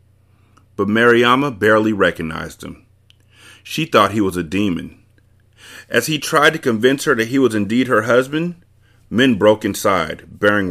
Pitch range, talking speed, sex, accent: 100-120 Hz, 150 wpm, male, American